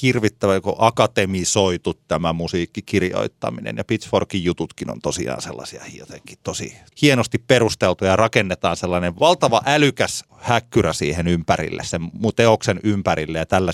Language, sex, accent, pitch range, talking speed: Finnish, male, native, 95-130 Hz, 120 wpm